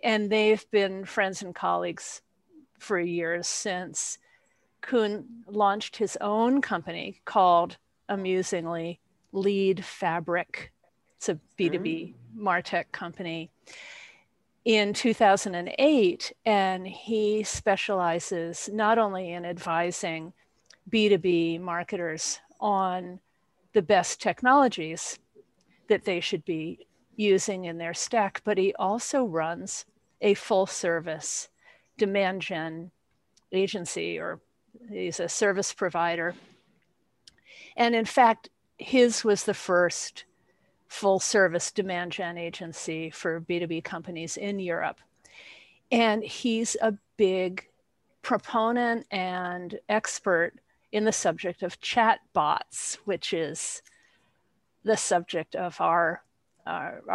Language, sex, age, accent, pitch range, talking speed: English, female, 50-69, American, 175-215 Hz, 105 wpm